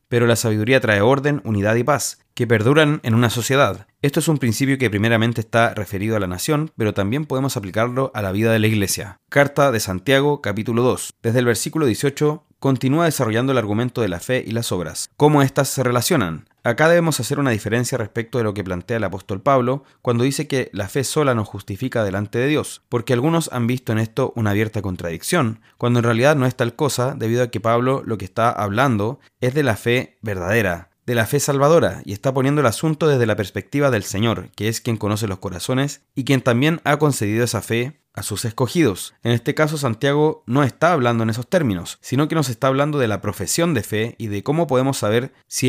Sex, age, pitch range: male, 30-49, 110-135 Hz